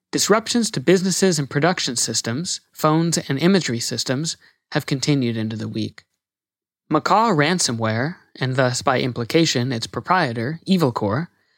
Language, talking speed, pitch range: English, 125 wpm, 125-165 Hz